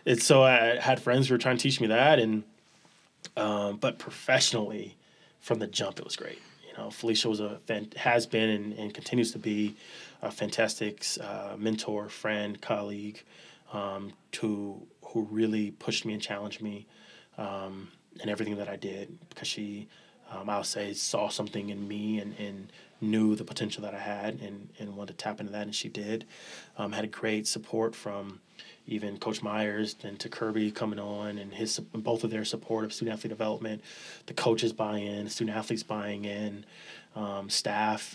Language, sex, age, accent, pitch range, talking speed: English, male, 20-39, American, 105-110 Hz, 185 wpm